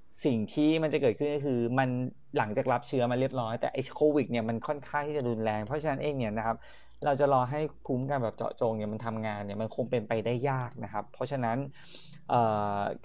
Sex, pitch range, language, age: male, 115-140 Hz, Thai, 20-39